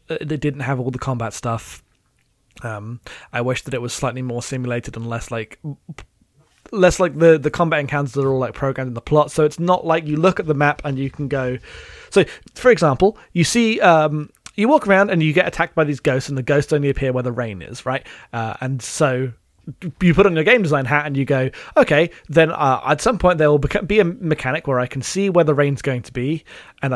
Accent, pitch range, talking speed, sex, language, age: British, 130-165 Hz, 240 wpm, male, English, 20-39